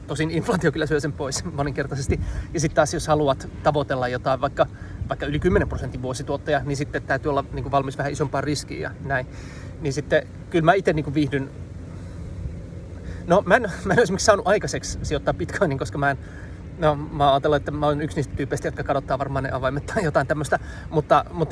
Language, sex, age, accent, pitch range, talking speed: Finnish, male, 30-49, native, 125-155 Hz, 195 wpm